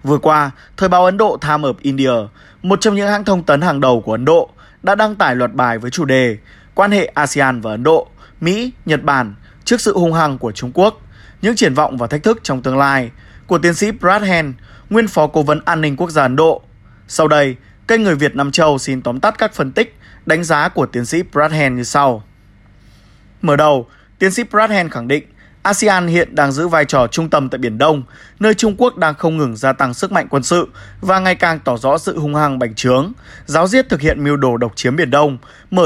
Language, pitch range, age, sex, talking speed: Vietnamese, 125-180 Hz, 20-39, male, 240 wpm